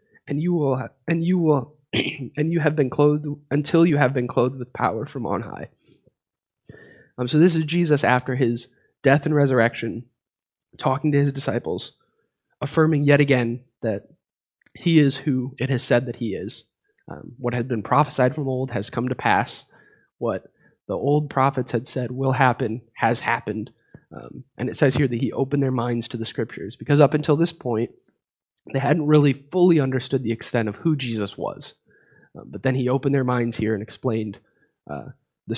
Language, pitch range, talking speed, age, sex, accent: English, 120-145 Hz, 185 wpm, 20-39, male, American